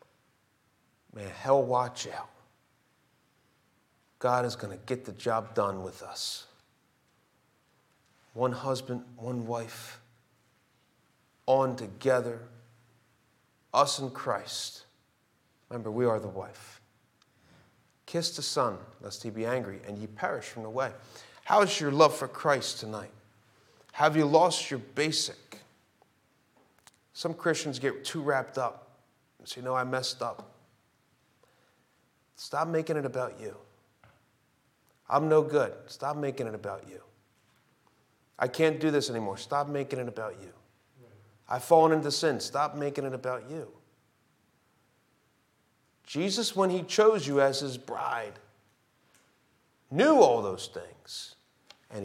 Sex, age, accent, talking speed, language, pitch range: male, 40-59, American, 125 wpm, English, 110-140 Hz